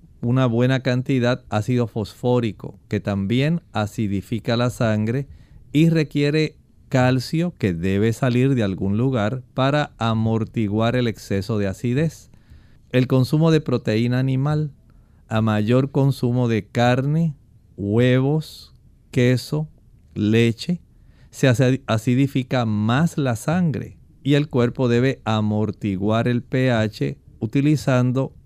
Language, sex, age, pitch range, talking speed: Spanish, male, 40-59, 110-140 Hz, 110 wpm